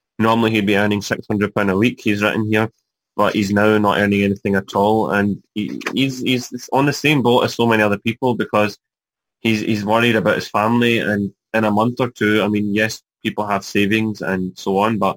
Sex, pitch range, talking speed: male, 100-115 Hz, 215 wpm